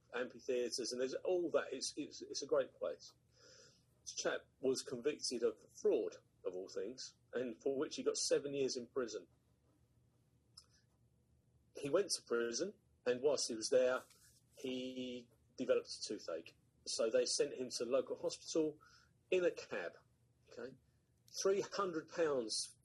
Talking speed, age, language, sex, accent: 140 wpm, 40-59, English, male, British